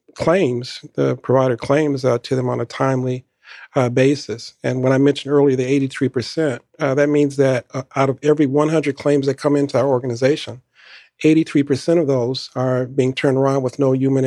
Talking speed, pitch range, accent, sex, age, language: 195 wpm, 125-140 Hz, American, male, 50-69, English